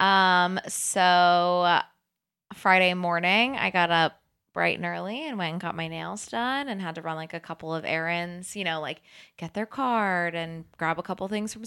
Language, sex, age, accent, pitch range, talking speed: English, female, 20-39, American, 170-210 Hz, 200 wpm